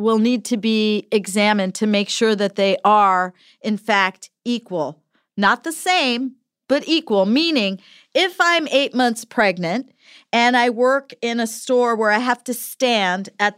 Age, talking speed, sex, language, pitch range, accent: 40-59, 165 wpm, female, English, 215-260 Hz, American